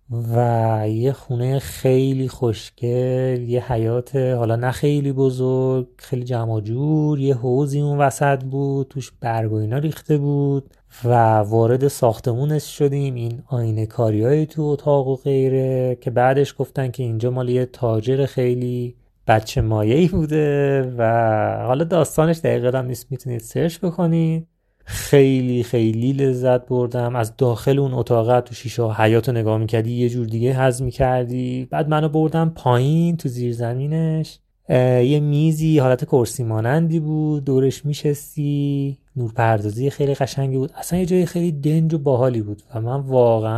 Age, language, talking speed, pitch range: 30-49, Persian, 140 wpm, 120-145 Hz